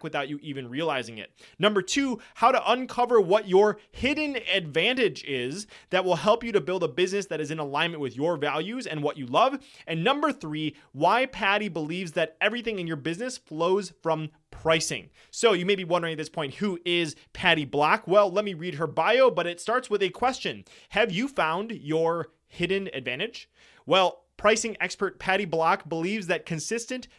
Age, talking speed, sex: 30-49, 190 wpm, male